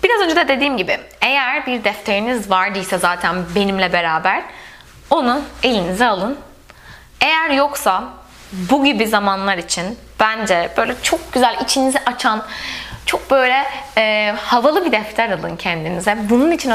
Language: Turkish